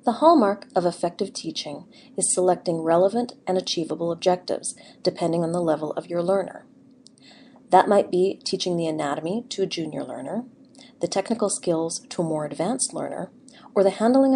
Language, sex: English, female